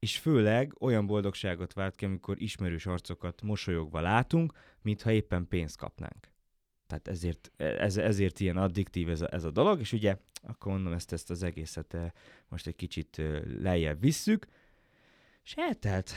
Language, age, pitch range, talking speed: Hungarian, 20-39, 85-110 Hz, 140 wpm